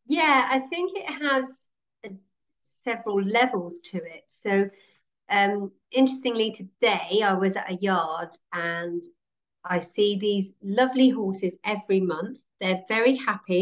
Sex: female